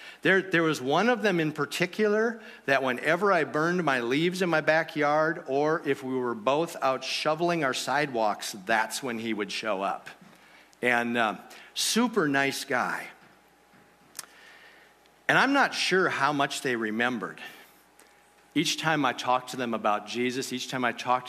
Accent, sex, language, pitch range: American, male, English, 120-150 Hz